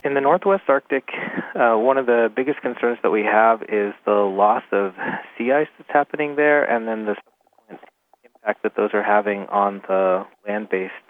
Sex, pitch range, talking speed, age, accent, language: male, 95-110 Hz, 180 wpm, 30-49, American, English